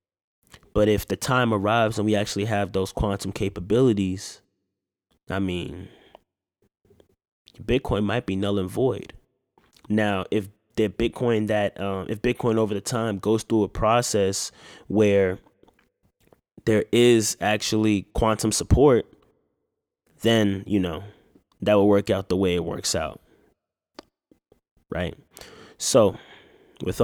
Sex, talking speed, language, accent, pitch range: male, 125 wpm, English, American, 100-115 Hz